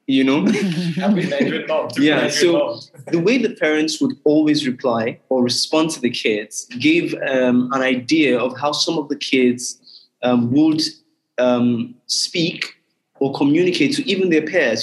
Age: 20-39